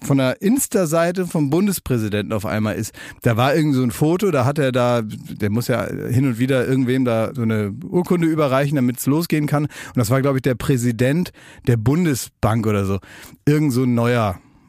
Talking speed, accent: 200 wpm, German